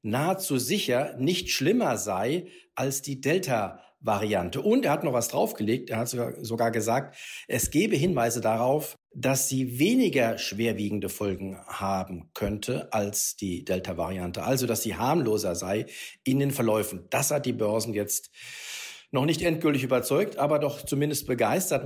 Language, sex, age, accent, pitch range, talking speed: German, male, 50-69, German, 115-150 Hz, 145 wpm